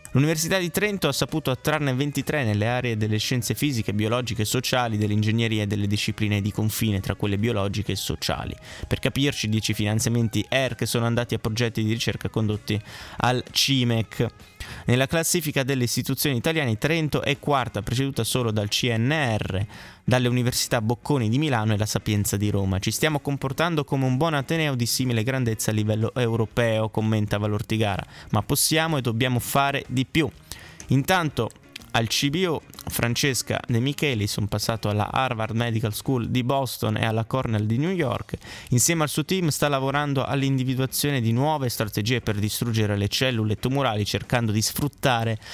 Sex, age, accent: male, 20-39, native